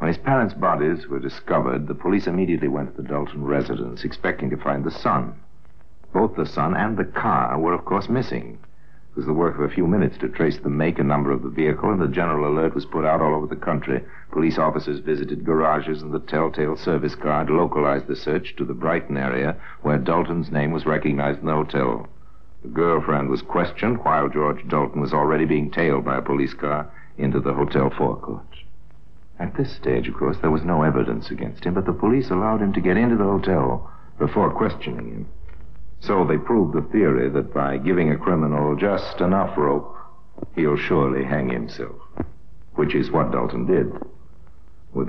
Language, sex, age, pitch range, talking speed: English, male, 60-79, 70-80 Hz, 195 wpm